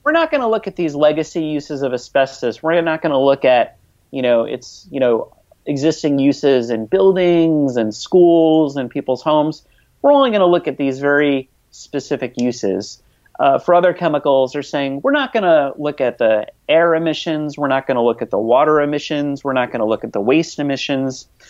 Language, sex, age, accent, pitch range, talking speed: English, male, 30-49, American, 125-170 Hz, 205 wpm